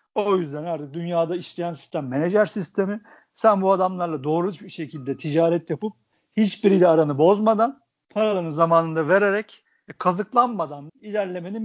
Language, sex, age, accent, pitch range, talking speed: Turkish, male, 50-69, native, 155-205 Hz, 125 wpm